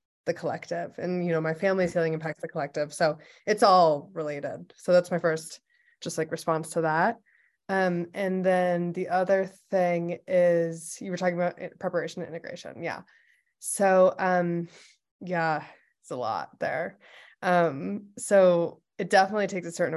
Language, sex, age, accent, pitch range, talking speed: English, female, 20-39, American, 165-185 Hz, 160 wpm